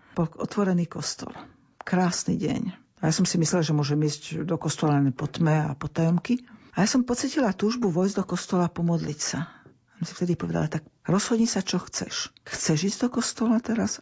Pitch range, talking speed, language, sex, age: 160-205 Hz, 185 wpm, Slovak, female, 50-69